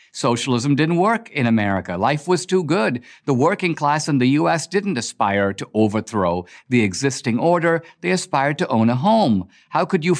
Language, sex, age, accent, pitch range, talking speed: English, male, 50-69, American, 105-160 Hz, 185 wpm